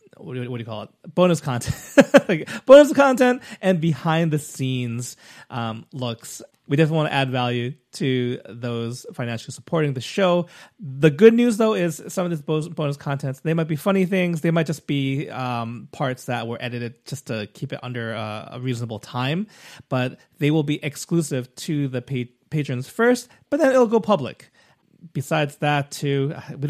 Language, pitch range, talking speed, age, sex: English, 125-175 Hz, 175 wpm, 30-49, male